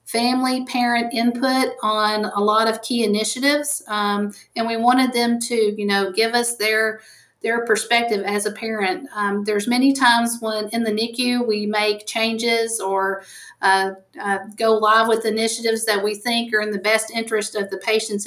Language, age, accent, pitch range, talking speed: English, 50-69, American, 210-235 Hz, 175 wpm